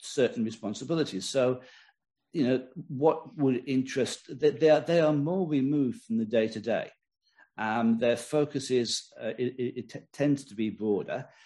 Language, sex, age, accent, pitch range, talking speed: English, male, 50-69, British, 120-160 Hz, 155 wpm